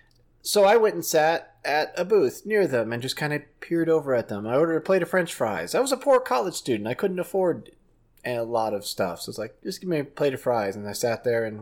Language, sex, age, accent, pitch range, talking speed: English, male, 30-49, American, 115-150 Hz, 280 wpm